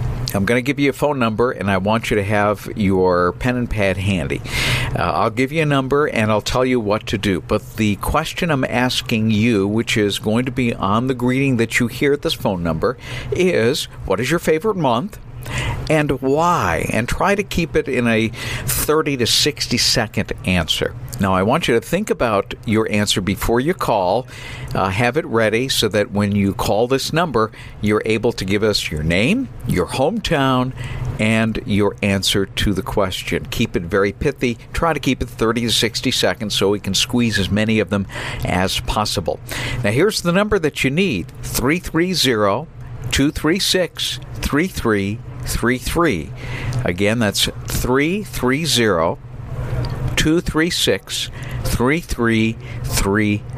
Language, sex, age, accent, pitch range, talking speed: English, male, 50-69, American, 110-130 Hz, 170 wpm